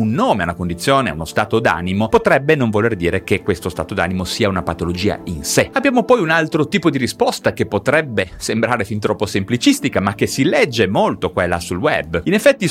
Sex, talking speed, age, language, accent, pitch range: male, 210 wpm, 30-49, Italian, native, 95-140 Hz